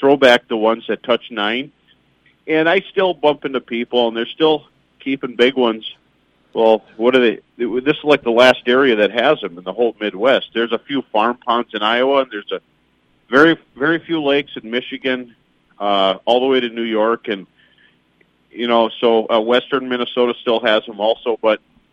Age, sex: 40-59, male